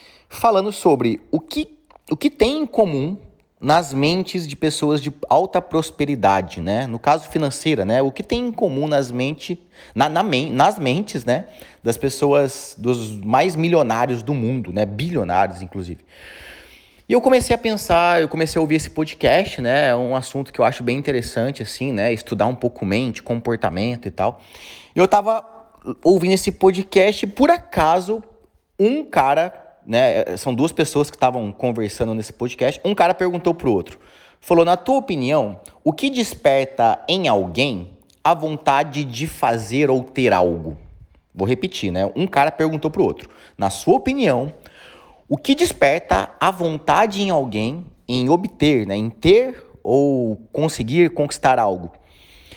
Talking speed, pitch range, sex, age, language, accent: 160 wpm, 120-185 Hz, male, 30-49, Portuguese, Brazilian